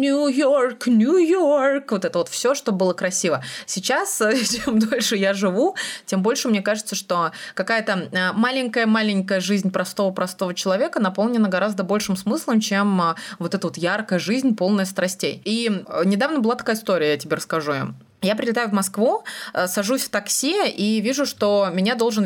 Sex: female